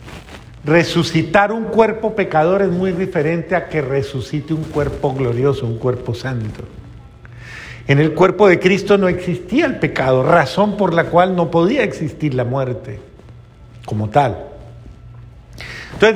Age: 50-69